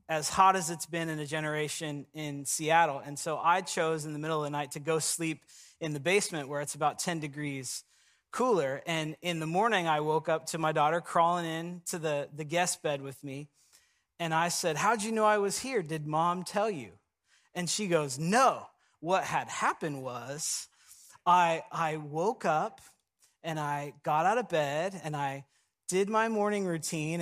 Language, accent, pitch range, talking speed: English, American, 150-185 Hz, 195 wpm